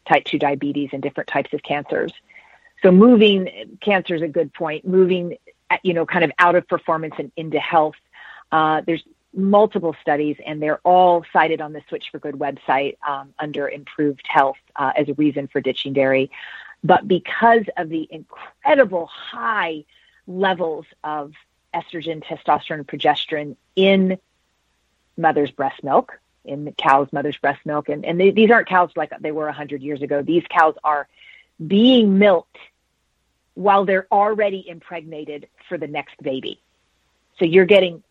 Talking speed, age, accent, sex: 160 wpm, 40-59, American, female